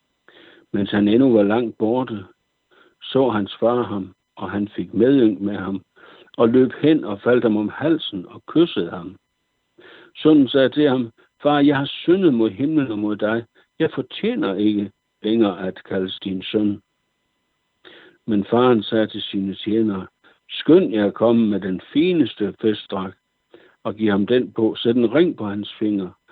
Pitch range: 100-130 Hz